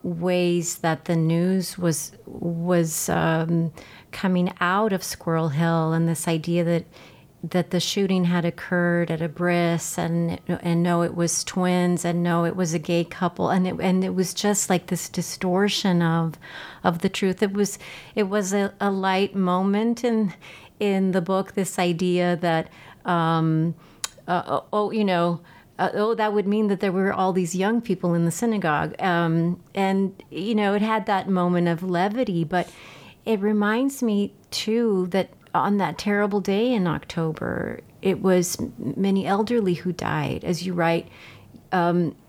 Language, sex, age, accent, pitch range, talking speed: English, female, 40-59, American, 170-195 Hz, 165 wpm